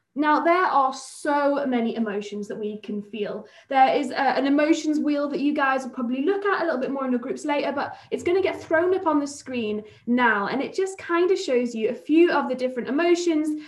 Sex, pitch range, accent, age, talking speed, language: female, 235-315 Hz, British, 10-29, 235 wpm, English